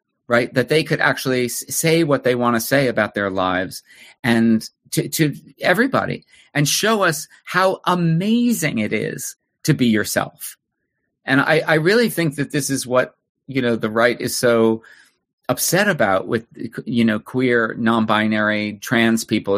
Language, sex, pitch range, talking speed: English, male, 115-155 Hz, 160 wpm